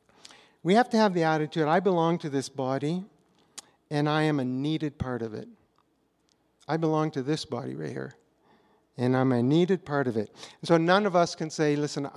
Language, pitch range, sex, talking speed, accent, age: English, 140-185 Hz, male, 195 wpm, American, 50-69